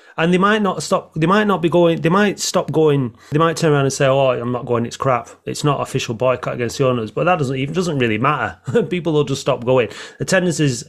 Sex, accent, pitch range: male, British, 125-165 Hz